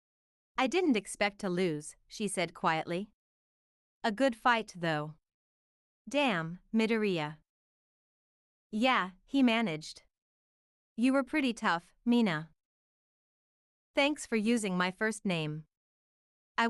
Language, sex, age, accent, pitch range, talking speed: English, female, 30-49, American, 170-230 Hz, 105 wpm